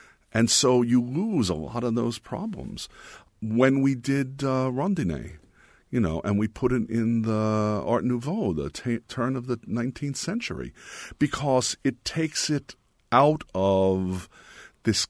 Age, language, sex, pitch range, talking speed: 50-69, English, male, 85-125 Hz, 150 wpm